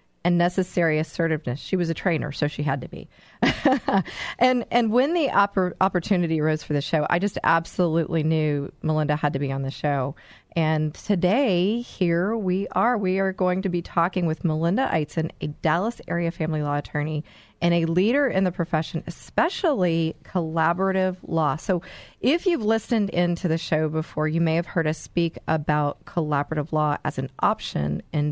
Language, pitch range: English, 155-195 Hz